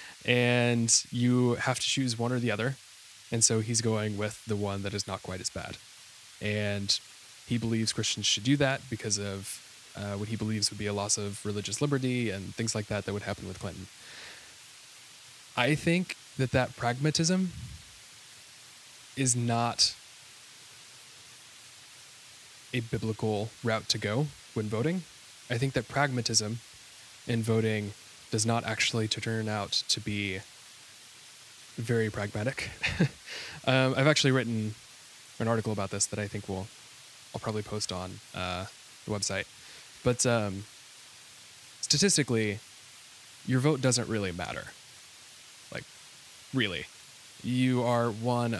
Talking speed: 140 wpm